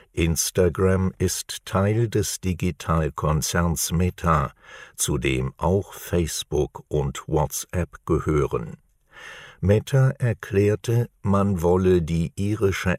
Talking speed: 90 wpm